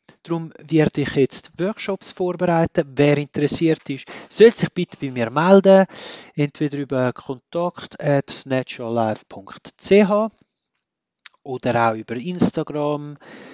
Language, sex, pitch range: German, male, 130-180 Hz